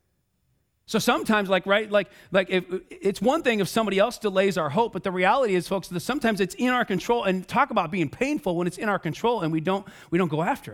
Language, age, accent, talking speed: English, 40-59, American, 245 wpm